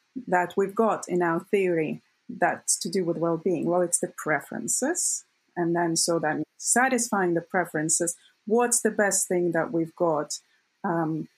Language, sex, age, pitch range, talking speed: English, female, 30-49, 165-200 Hz, 160 wpm